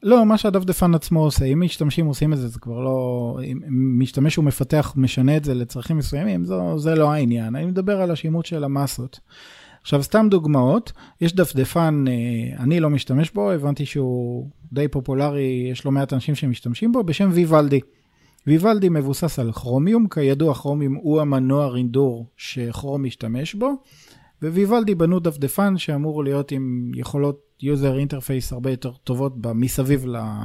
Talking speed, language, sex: 150 wpm, Hebrew, male